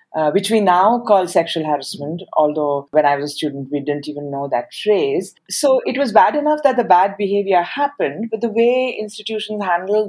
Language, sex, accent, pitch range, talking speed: English, female, Indian, 165-220 Hz, 200 wpm